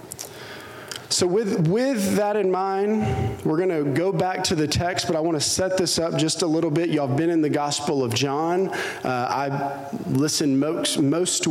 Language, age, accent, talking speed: English, 40-59, American, 200 wpm